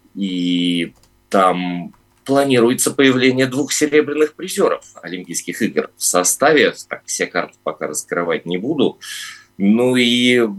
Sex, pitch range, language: male, 85-130 Hz, Russian